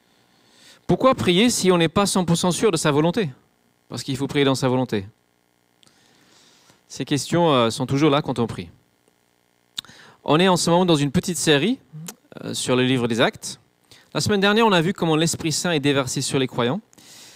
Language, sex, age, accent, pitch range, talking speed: French, male, 40-59, French, 120-165 Hz, 185 wpm